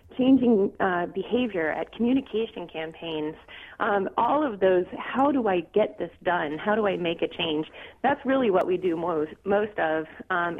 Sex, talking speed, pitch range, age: female, 175 wpm, 180-245 Hz, 30-49